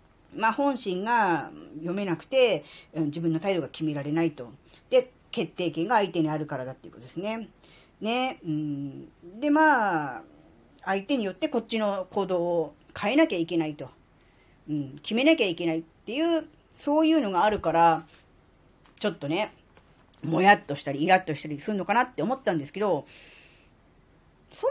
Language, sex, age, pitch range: Japanese, female, 40-59, 160-235 Hz